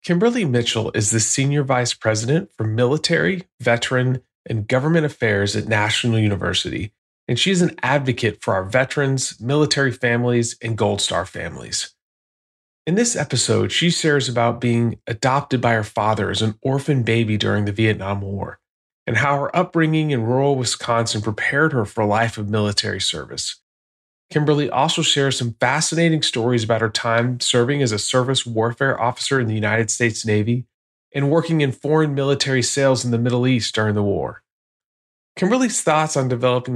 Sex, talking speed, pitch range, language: male, 165 wpm, 110-140 Hz, English